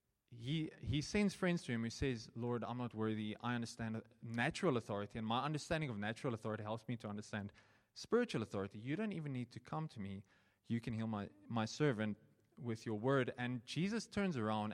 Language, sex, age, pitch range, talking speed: English, male, 20-39, 110-135 Hz, 200 wpm